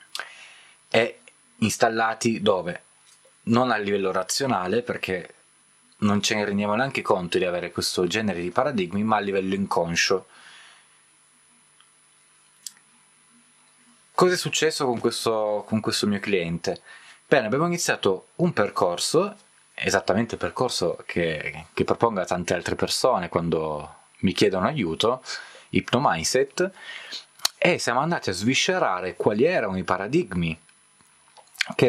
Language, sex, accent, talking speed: Italian, male, native, 115 wpm